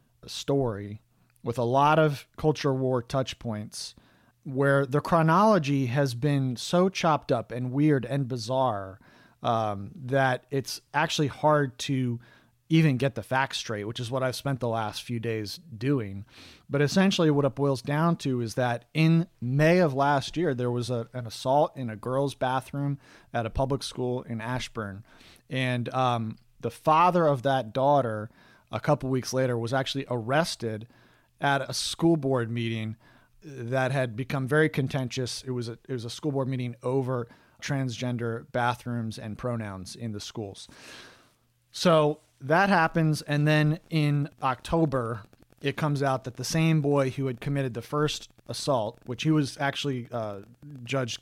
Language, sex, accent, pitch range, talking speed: English, male, American, 120-145 Hz, 165 wpm